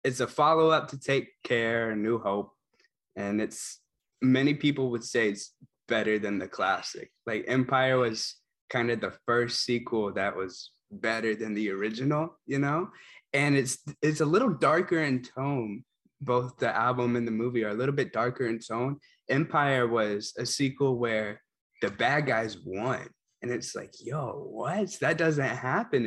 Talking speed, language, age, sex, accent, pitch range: 170 wpm, English, 20-39, male, American, 110-135 Hz